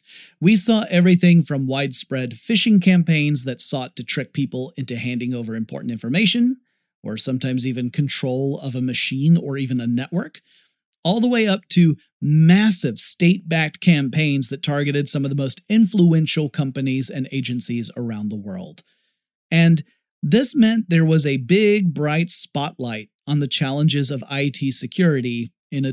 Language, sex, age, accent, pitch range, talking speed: English, male, 40-59, American, 135-175 Hz, 155 wpm